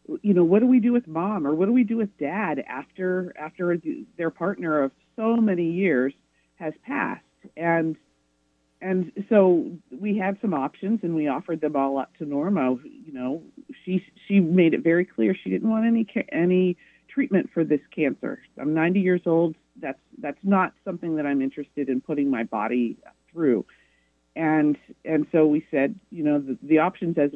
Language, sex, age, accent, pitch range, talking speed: English, female, 50-69, American, 145-205 Hz, 185 wpm